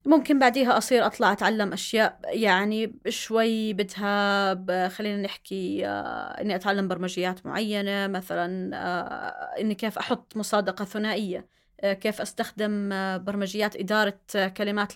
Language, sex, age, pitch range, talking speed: Arabic, female, 20-39, 195-225 Hz, 105 wpm